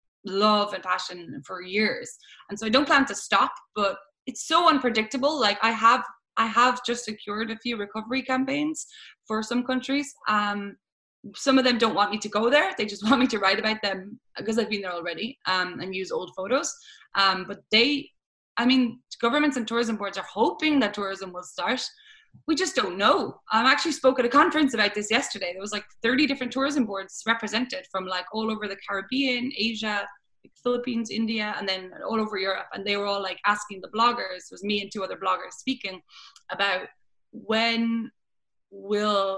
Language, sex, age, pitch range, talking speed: English, female, 20-39, 205-265 Hz, 195 wpm